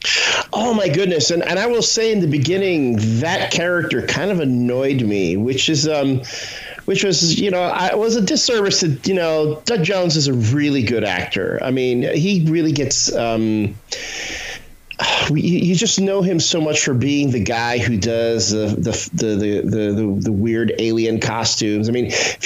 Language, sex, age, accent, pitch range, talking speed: English, male, 40-59, American, 110-160 Hz, 185 wpm